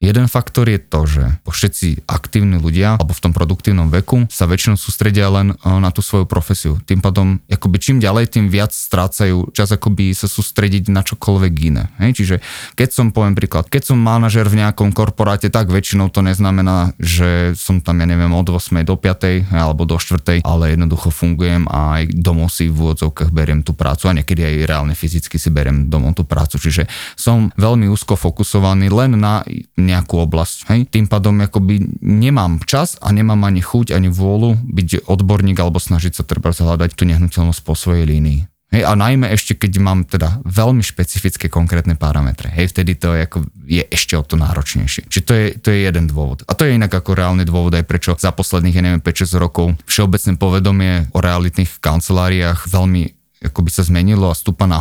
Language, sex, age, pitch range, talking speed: Slovak, male, 20-39, 85-100 Hz, 190 wpm